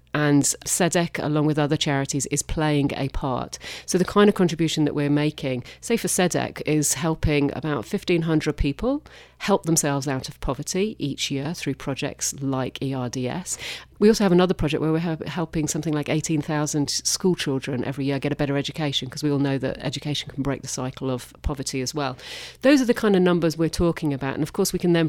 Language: English